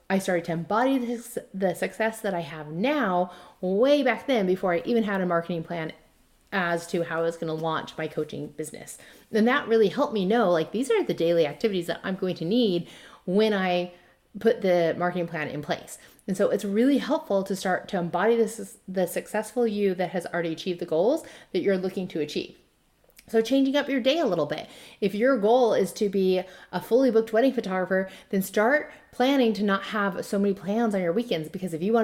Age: 30-49